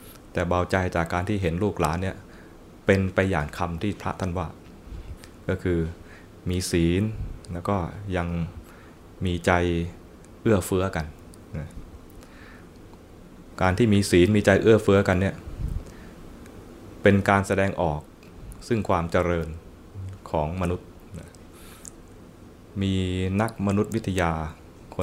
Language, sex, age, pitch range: Thai, male, 20-39, 85-100 Hz